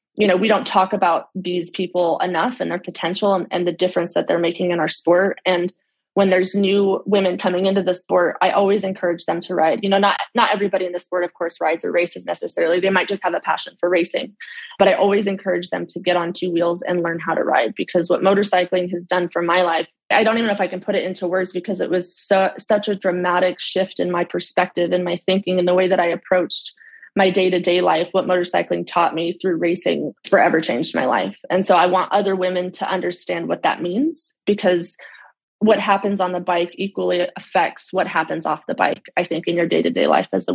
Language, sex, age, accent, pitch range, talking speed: English, female, 20-39, American, 175-195 Hz, 235 wpm